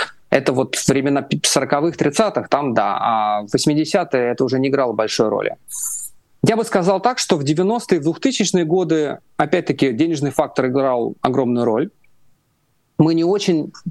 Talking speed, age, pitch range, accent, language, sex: 145 wpm, 30-49, 135-170 Hz, native, Russian, male